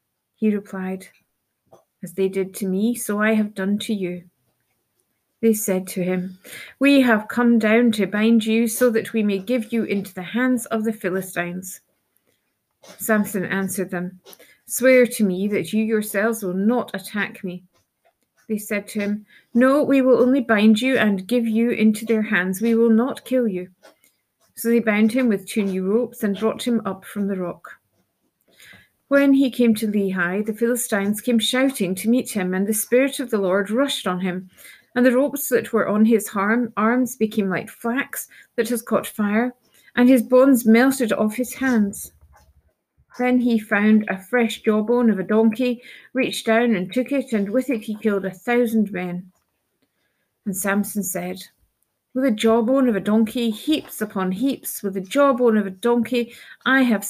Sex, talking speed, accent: female, 180 wpm, British